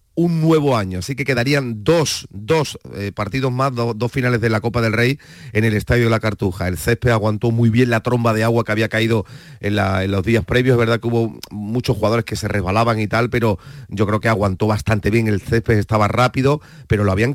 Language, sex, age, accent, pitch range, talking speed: Spanish, male, 40-59, Spanish, 110-130 Hz, 235 wpm